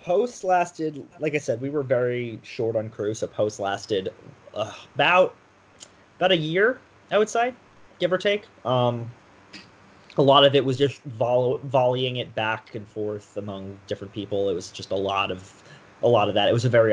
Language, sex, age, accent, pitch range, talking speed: English, male, 20-39, American, 100-135 Hz, 195 wpm